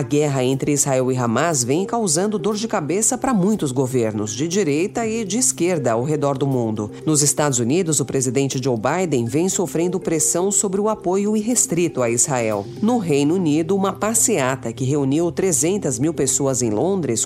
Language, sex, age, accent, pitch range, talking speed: Portuguese, female, 50-69, Brazilian, 135-190 Hz, 175 wpm